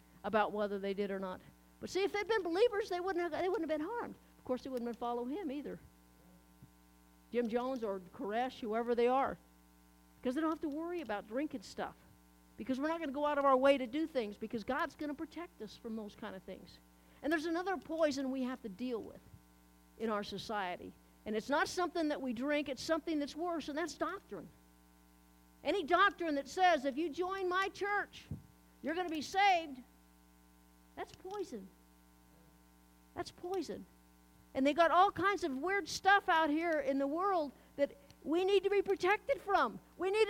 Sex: female